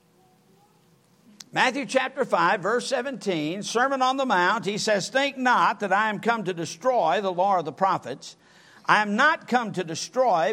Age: 60-79